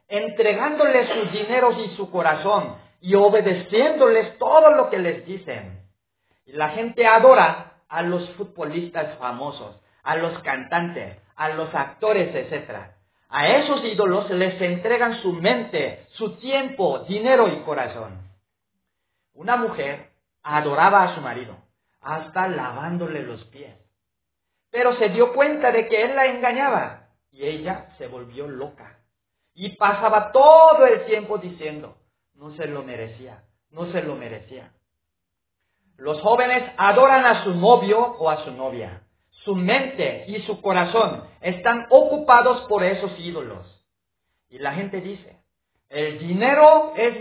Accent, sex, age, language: Mexican, male, 50-69, Spanish